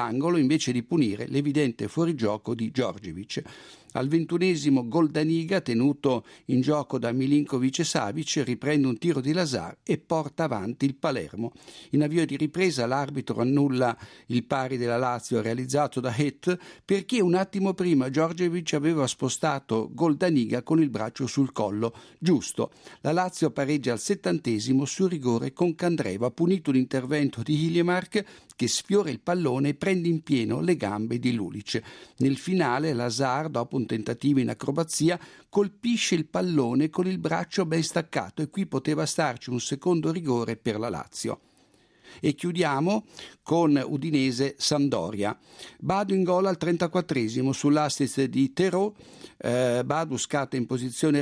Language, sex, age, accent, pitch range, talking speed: Italian, male, 60-79, native, 125-165 Hz, 145 wpm